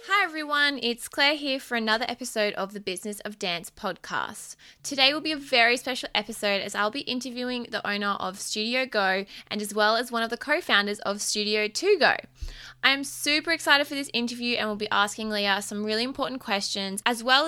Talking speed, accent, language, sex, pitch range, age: 205 wpm, Australian, English, female, 205-250 Hz, 20-39